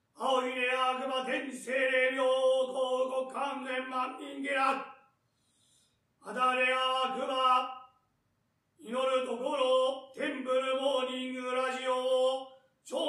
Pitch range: 255-270 Hz